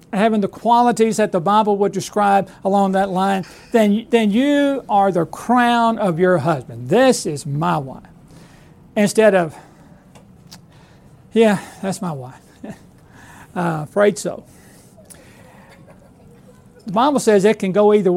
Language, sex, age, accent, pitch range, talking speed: English, male, 60-79, American, 175-220 Hz, 130 wpm